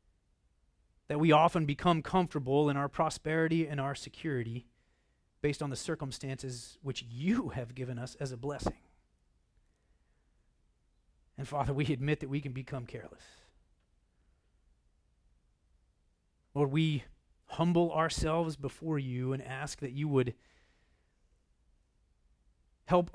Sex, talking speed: male, 115 wpm